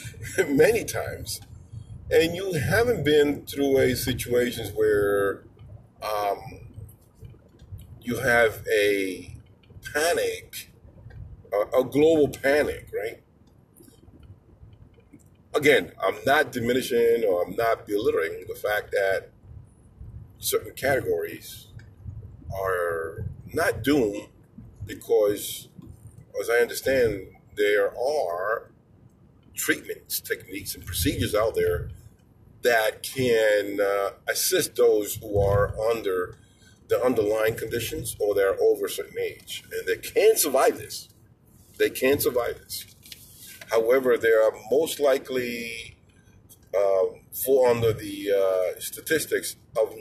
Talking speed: 105 wpm